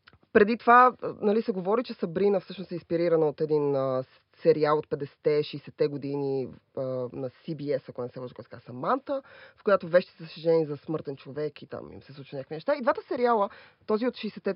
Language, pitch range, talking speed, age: Bulgarian, 155-215 Hz, 185 wpm, 20-39